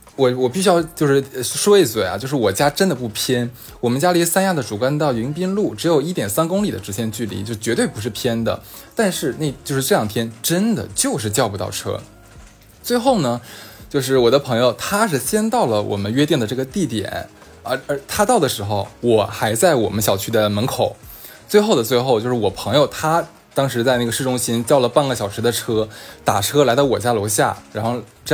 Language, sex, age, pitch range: Chinese, male, 20-39, 115-160 Hz